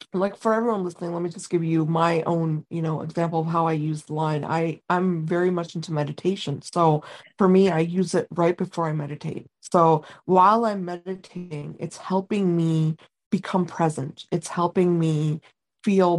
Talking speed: 180 wpm